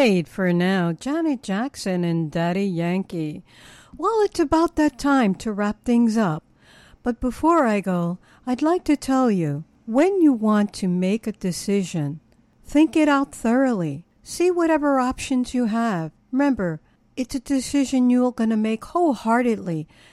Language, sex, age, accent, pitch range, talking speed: English, female, 60-79, American, 195-280 Hz, 150 wpm